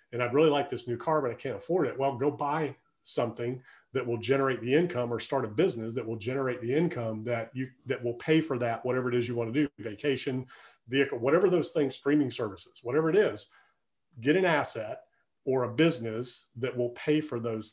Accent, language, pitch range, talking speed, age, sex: American, English, 120-145 Hz, 220 wpm, 40-59, male